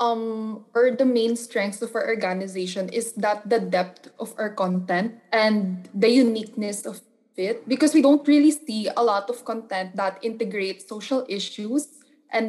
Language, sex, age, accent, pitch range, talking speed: English, female, 20-39, Filipino, 195-245 Hz, 165 wpm